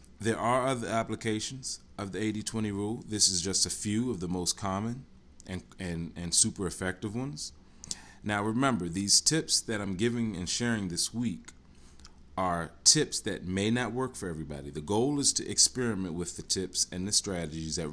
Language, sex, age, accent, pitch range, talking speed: English, male, 30-49, American, 85-110 Hz, 180 wpm